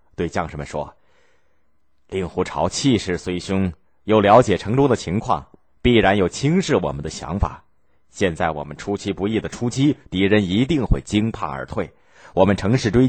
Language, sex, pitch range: Chinese, male, 80-130 Hz